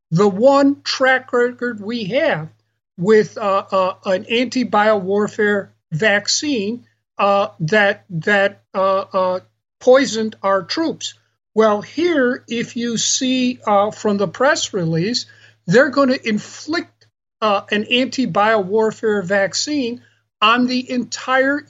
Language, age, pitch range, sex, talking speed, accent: English, 50-69, 195-250 Hz, male, 120 wpm, American